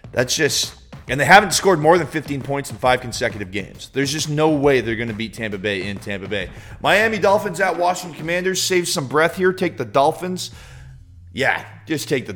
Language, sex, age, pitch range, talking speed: English, male, 30-49, 110-160 Hz, 210 wpm